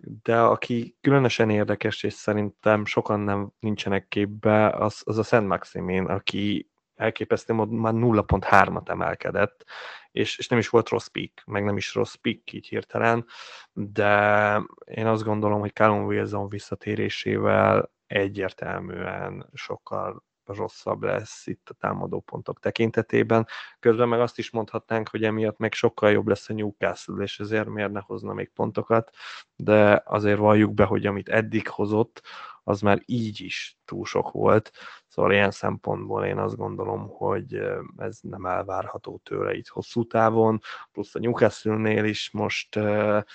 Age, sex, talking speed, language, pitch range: 20-39, male, 145 wpm, Hungarian, 100-115 Hz